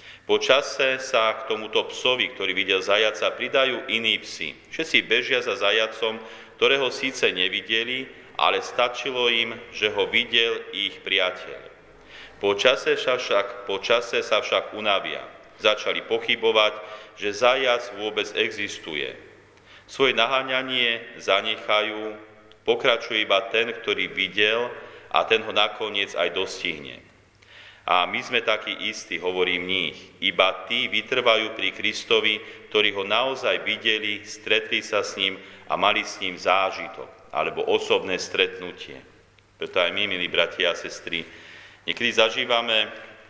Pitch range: 105-135 Hz